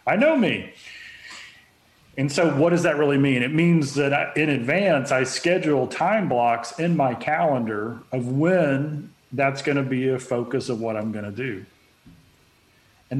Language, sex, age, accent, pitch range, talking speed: English, male, 40-59, American, 125-150 Hz, 170 wpm